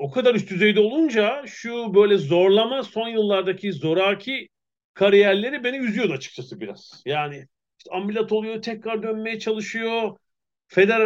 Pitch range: 135-200 Hz